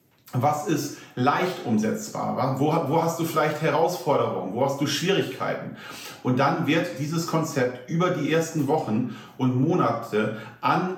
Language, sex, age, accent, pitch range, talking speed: German, male, 40-59, German, 130-170 Hz, 140 wpm